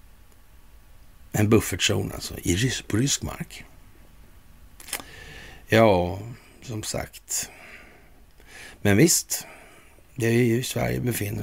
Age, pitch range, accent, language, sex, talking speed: 60-79, 95-130 Hz, native, Swedish, male, 100 wpm